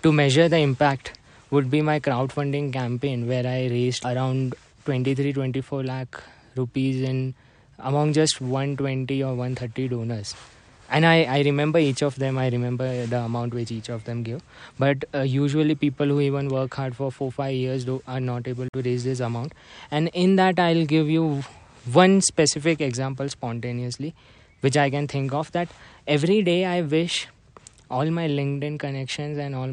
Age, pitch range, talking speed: 20-39, 130-155 Hz, 170 wpm